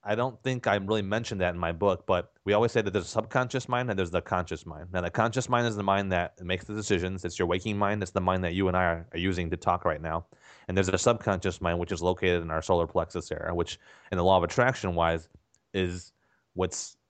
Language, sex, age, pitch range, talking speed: English, male, 30-49, 90-105 Hz, 260 wpm